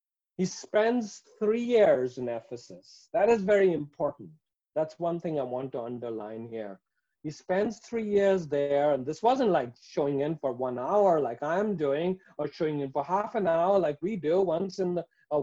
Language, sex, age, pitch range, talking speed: English, male, 50-69, 155-225 Hz, 185 wpm